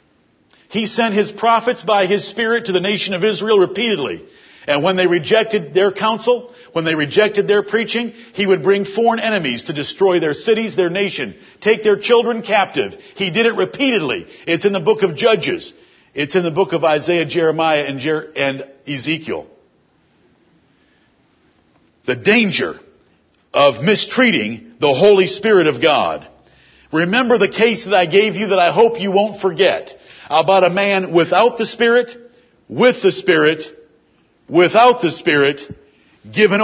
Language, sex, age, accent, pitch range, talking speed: English, male, 50-69, American, 175-225 Hz, 155 wpm